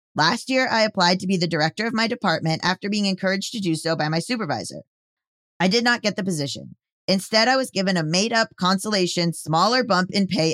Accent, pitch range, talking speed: American, 165-215 Hz, 210 wpm